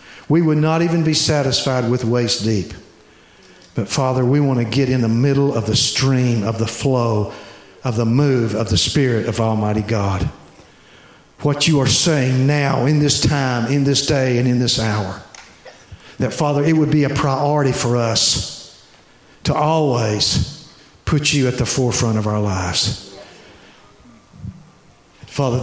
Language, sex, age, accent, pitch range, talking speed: English, male, 50-69, American, 110-140 Hz, 160 wpm